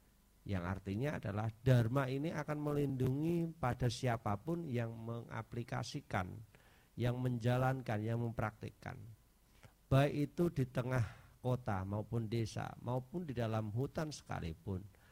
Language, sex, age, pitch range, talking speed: Indonesian, male, 50-69, 105-145 Hz, 105 wpm